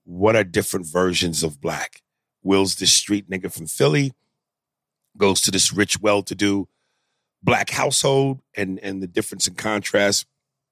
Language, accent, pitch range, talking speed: English, American, 100-140 Hz, 140 wpm